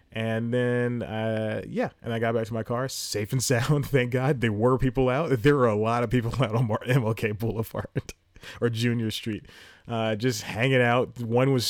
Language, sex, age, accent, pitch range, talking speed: English, male, 30-49, American, 95-120 Hz, 200 wpm